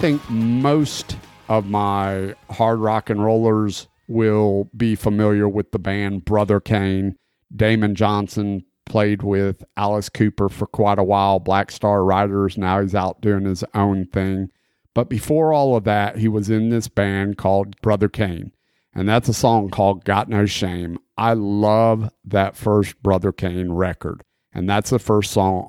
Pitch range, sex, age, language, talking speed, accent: 95-115 Hz, male, 50-69, English, 165 wpm, American